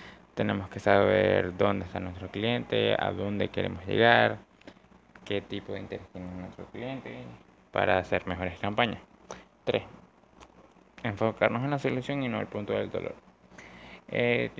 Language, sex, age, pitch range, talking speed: Spanish, male, 20-39, 100-120 Hz, 140 wpm